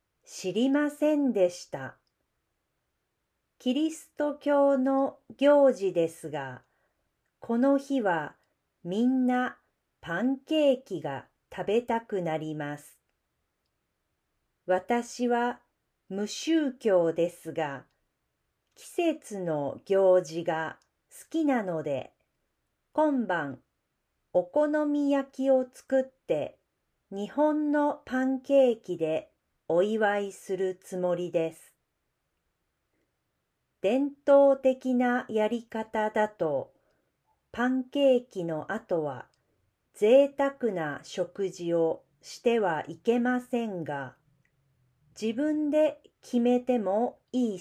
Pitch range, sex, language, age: 175-270 Hz, female, Japanese, 40-59